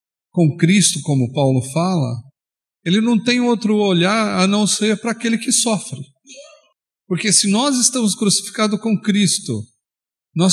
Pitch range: 170-230 Hz